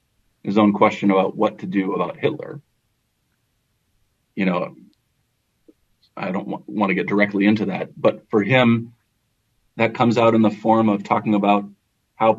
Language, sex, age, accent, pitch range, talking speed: English, male, 40-59, American, 105-125 Hz, 155 wpm